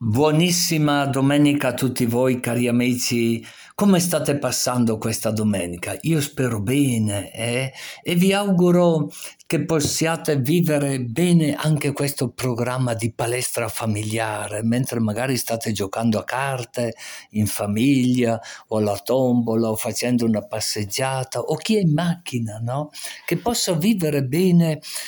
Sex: male